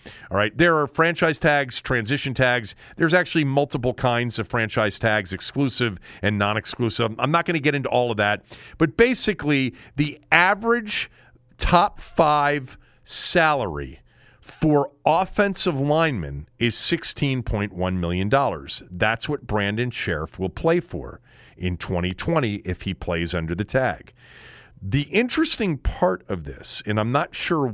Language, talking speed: English, 140 wpm